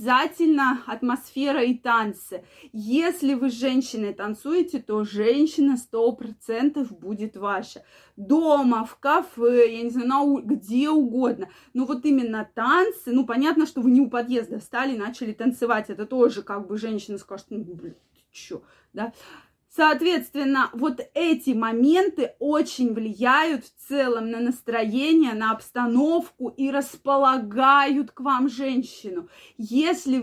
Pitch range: 230-295 Hz